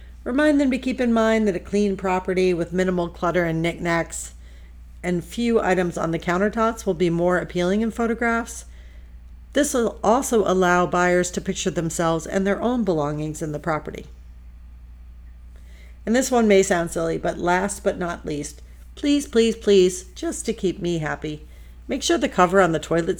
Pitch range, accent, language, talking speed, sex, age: 130-220 Hz, American, English, 175 wpm, female, 50-69